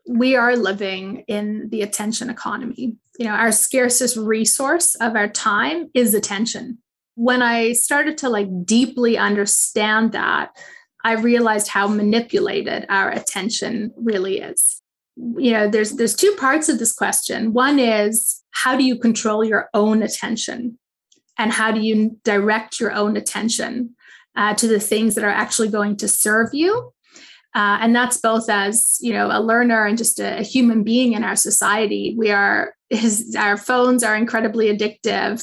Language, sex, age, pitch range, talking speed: English, female, 30-49, 215-245 Hz, 160 wpm